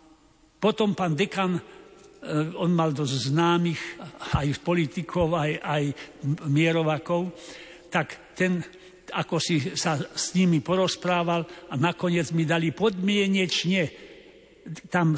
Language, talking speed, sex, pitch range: Slovak, 105 wpm, male, 155-180 Hz